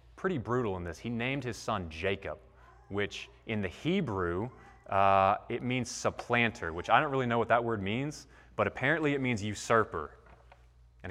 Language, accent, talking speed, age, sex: English, American, 175 wpm, 30-49, male